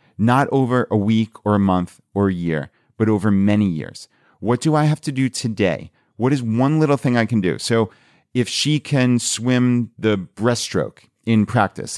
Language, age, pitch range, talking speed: English, 30-49, 100-125 Hz, 190 wpm